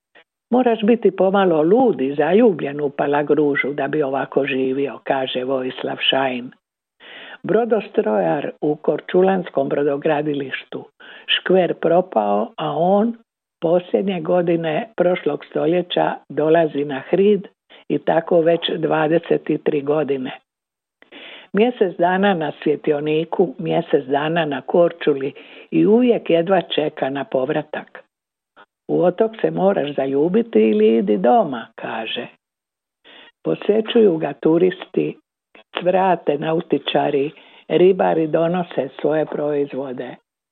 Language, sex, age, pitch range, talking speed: Croatian, female, 60-79, 145-180 Hz, 100 wpm